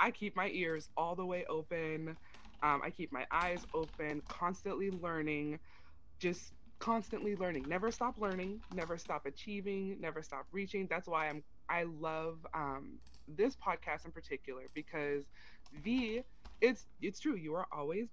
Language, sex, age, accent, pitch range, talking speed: English, female, 20-39, American, 145-190 Hz, 150 wpm